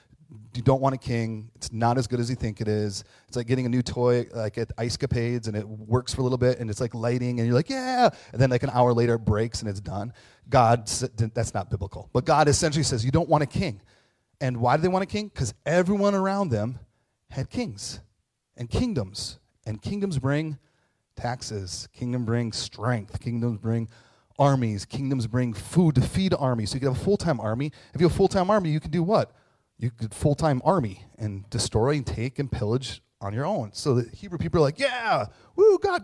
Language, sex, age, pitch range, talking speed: English, male, 30-49, 115-145 Hz, 220 wpm